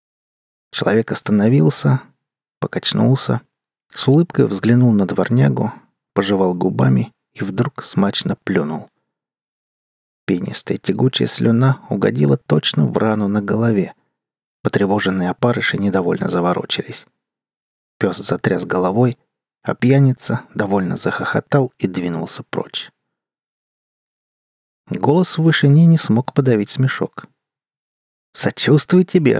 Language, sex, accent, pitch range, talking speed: Russian, male, native, 95-140 Hz, 95 wpm